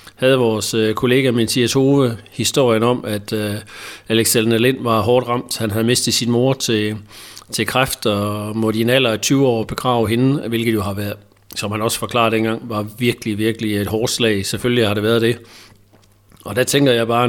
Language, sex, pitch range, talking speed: Danish, male, 110-130 Hz, 195 wpm